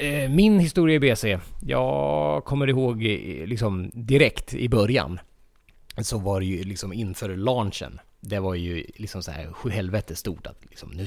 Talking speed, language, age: 125 wpm, English, 20-39